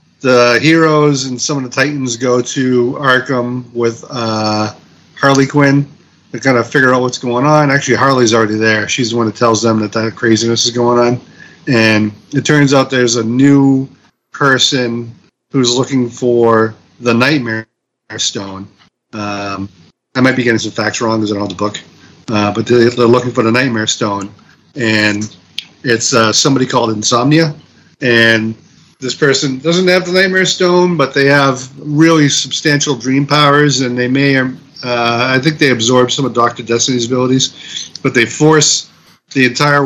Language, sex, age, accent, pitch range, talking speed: English, male, 40-59, American, 115-135 Hz, 170 wpm